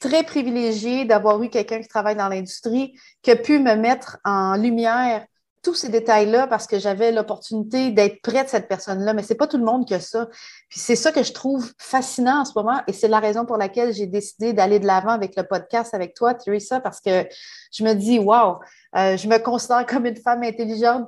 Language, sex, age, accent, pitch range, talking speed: English, female, 30-49, Canadian, 215-260 Hz, 220 wpm